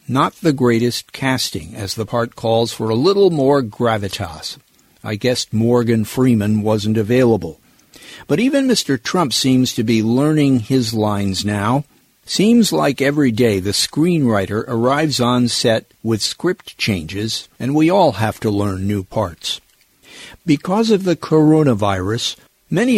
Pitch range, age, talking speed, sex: 110-140 Hz, 50-69, 145 wpm, male